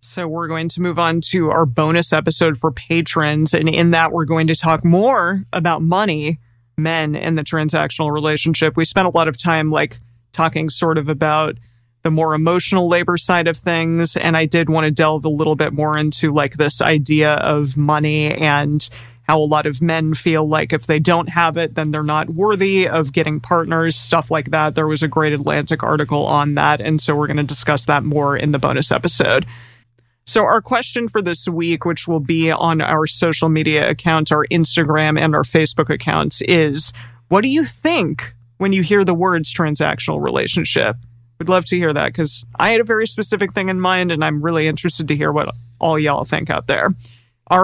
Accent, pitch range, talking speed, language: American, 150-170 Hz, 205 wpm, English